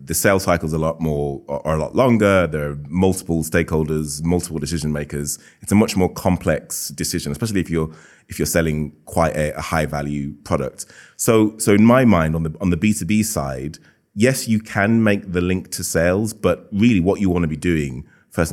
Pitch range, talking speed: 75-95 Hz, 205 wpm